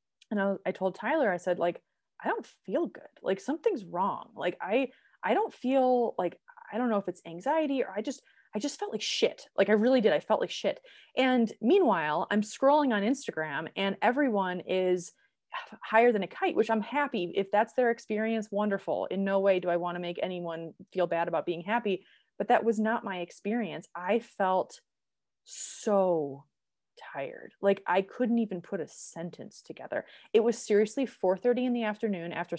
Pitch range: 180-245 Hz